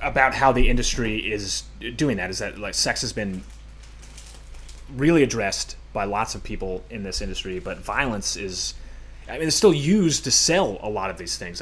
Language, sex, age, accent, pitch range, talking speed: English, male, 30-49, American, 95-135 Hz, 190 wpm